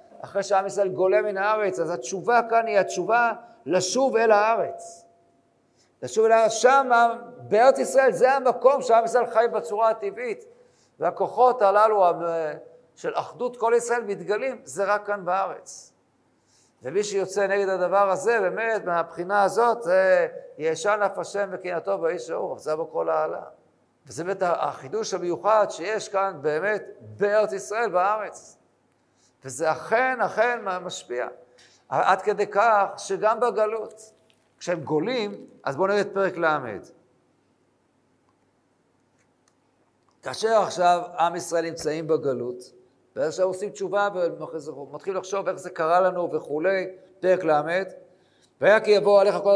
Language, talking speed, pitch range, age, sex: Hebrew, 125 wpm, 170-225 Hz, 50-69, male